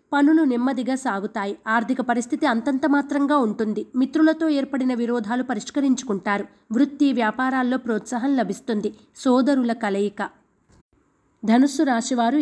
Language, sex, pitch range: Telugu, female, 230-280 Hz